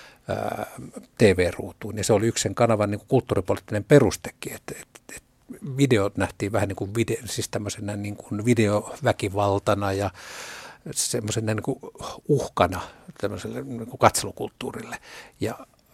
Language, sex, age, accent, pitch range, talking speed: Finnish, male, 60-79, native, 100-120 Hz, 120 wpm